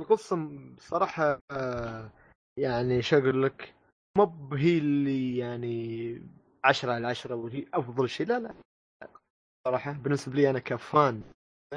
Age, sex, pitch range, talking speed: 20-39, male, 120-145 Hz, 115 wpm